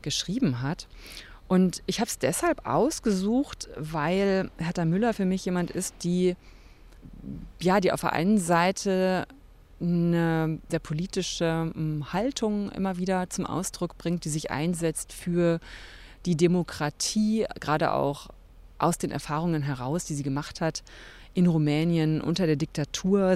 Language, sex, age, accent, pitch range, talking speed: German, female, 30-49, German, 150-180 Hz, 135 wpm